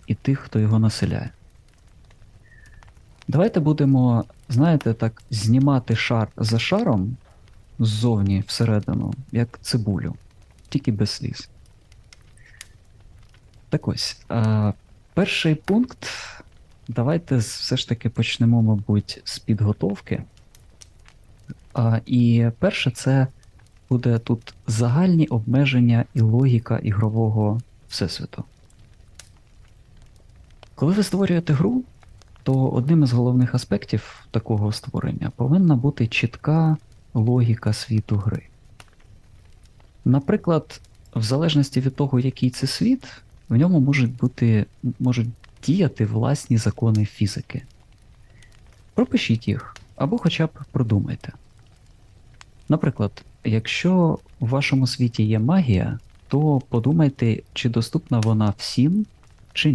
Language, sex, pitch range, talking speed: Ukrainian, male, 105-135 Hz, 95 wpm